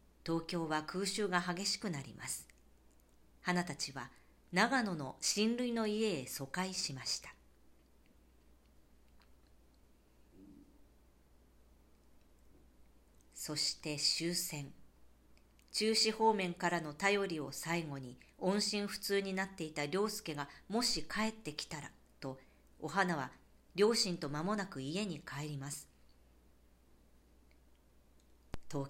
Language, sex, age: Japanese, female, 50-69